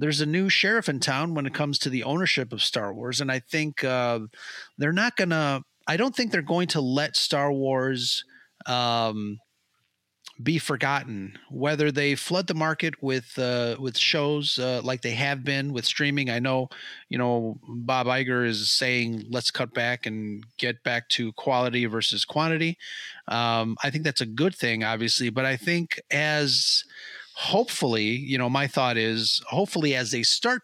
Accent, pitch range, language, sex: American, 120-145 Hz, English, male